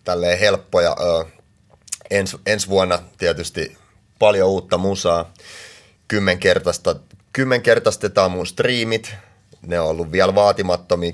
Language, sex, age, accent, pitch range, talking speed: Finnish, male, 30-49, native, 85-100 Hz, 100 wpm